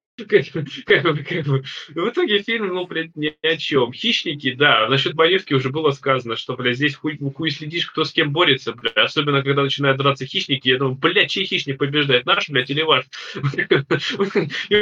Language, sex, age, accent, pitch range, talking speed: Russian, male, 20-39, native, 125-165 Hz, 185 wpm